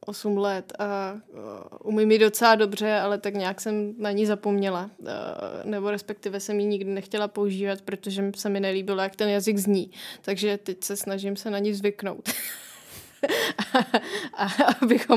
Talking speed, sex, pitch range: 150 wpm, female, 195-215 Hz